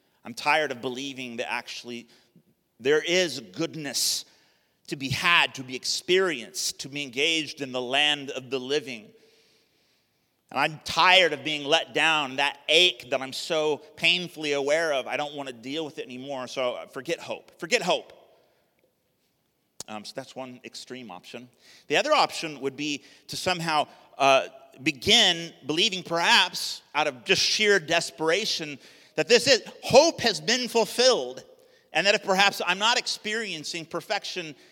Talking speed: 155 wpm